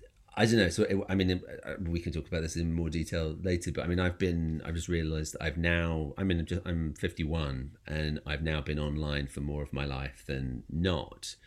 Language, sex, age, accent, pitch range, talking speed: English, male, 40-59, British, 75-90 Hz, 220 wpm